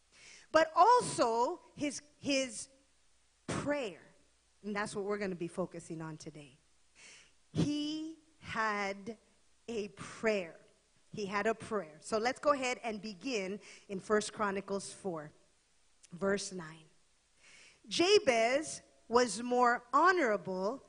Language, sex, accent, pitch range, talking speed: English, female, American, 205-300 Hz, 110 wpm